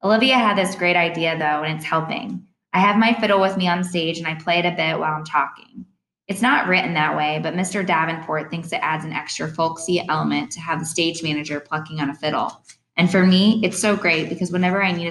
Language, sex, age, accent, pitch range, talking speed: English, female, 20-39, American, 155-195 Hz, 240 wpm